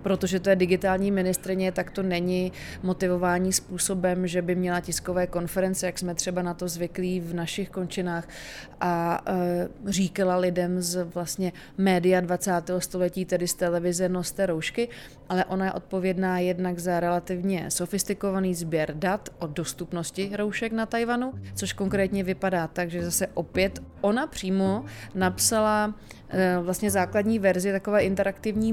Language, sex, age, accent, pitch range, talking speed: Czech, female, 20-39, native, 180-200 Hz, 140 wpm